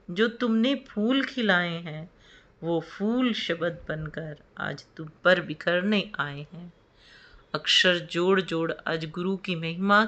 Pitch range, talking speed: 160-215 Hz, 130 wpm